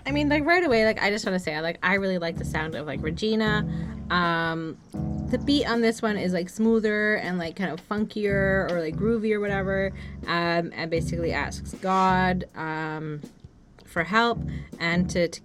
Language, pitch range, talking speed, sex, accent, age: English, 160-195 Hz, 195 wpm, female, American, 20-39